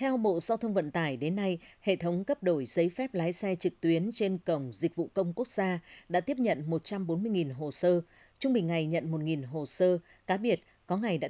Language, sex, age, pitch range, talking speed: Vietnamese, female, 20-39, 155-200 Hz, 235 wpm